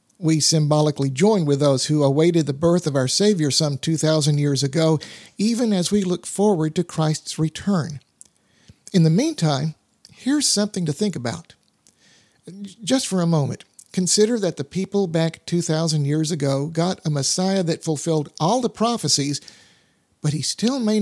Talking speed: 160 wpm